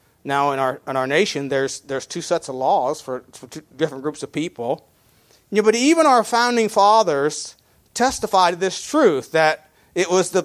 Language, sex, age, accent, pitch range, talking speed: English, male, 40-59, American, 135-185 Hz, 195 wpm